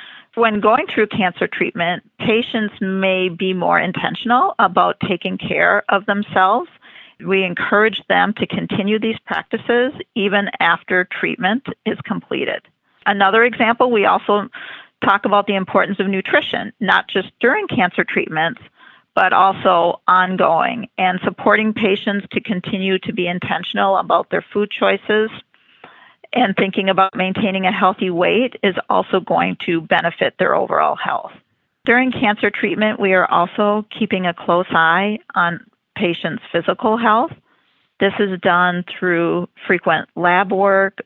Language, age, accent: English, 40-59, American